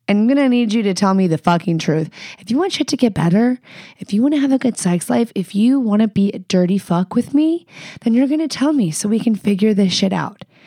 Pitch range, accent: 170-230 Hz, American